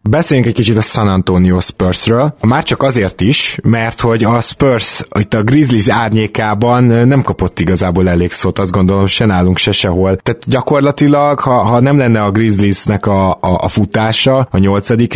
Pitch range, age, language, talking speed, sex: 95-120 Hz, 20-39, Hungarian, 175 wpm, male